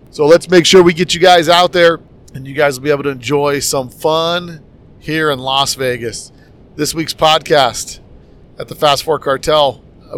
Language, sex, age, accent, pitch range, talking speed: English, male, 40-59, American, 130-150 Hz, 195 wpm